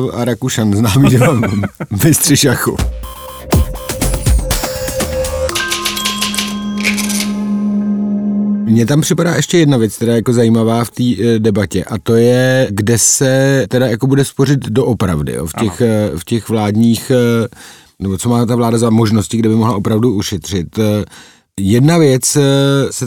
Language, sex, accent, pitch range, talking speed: Czech, male, native, 105-135 Hz, 135 wpm